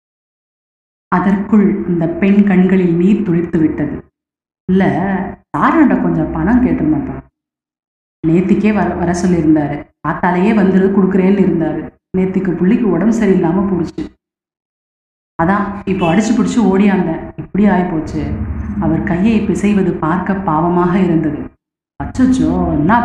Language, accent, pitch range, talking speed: Tamil, native, 175-215 Hz, 105 wpm